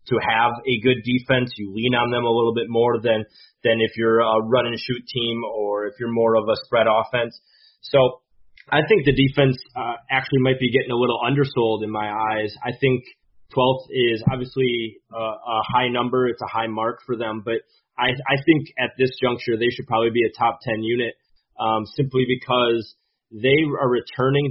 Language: English